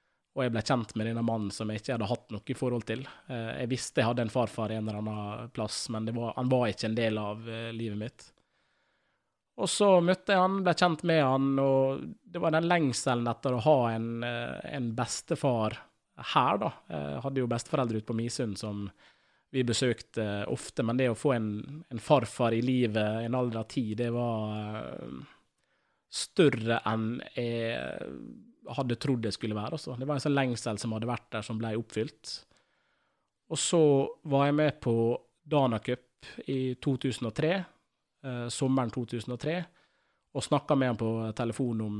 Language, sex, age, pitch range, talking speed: English, male, 20-39, 110-135 Hz, 170 wpm